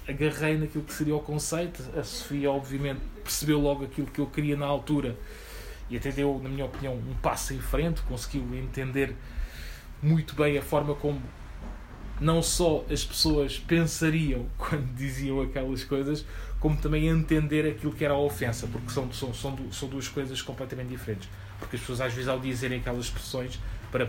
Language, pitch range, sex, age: Portuguese, 115-140 Hz, male, 20-39